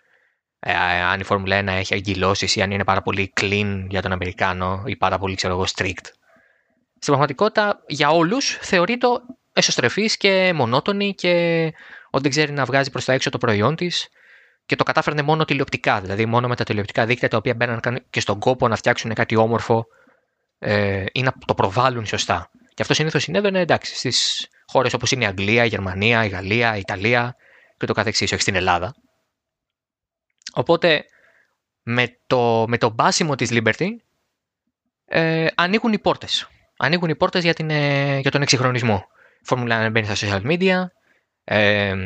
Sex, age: male, 20-39